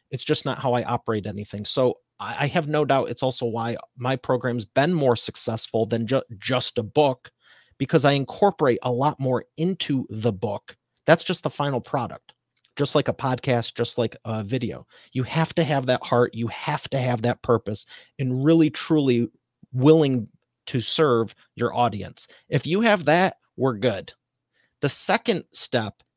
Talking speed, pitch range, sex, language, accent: 170 wpm, 120-150 Hz, male, English, American